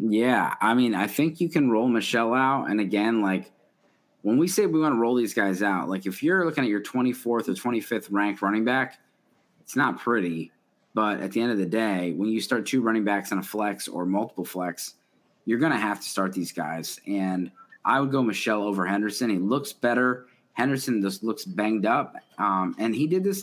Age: 20-39